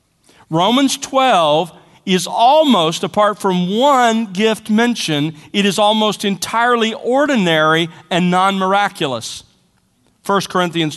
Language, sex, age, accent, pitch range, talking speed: English, male, 40-59, American, 145-195 Hz, 100 wpm